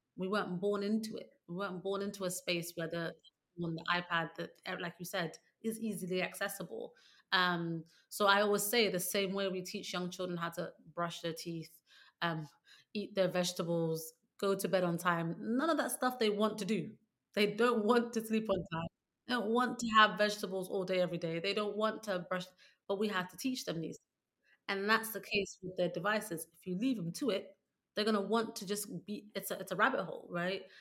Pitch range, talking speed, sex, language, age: 170-205 Hz, 220 wpm, female, English, 30-49